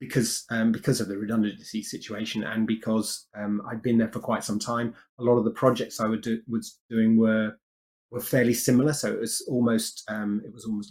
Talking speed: 215 wpm